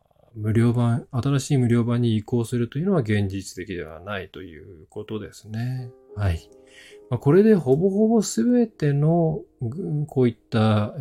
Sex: male